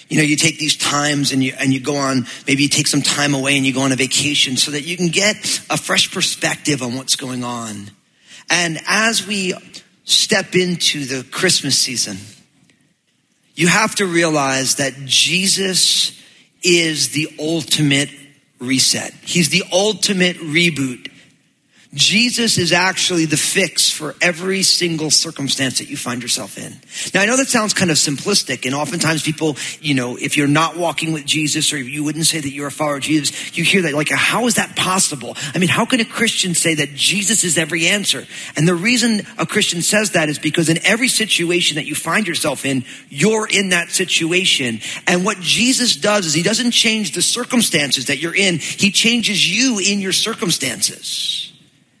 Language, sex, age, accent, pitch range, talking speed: English, male, 40-59, American, 145-190 Hz, 185 wpm